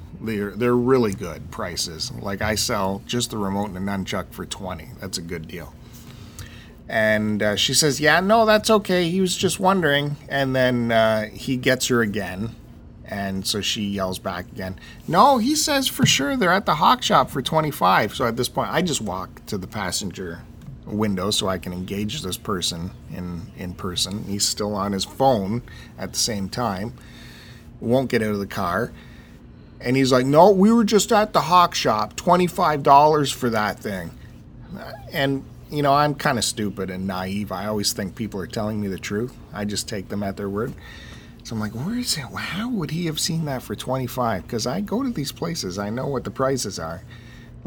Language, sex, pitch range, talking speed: English, male, 100-135 Hz, 200 wpm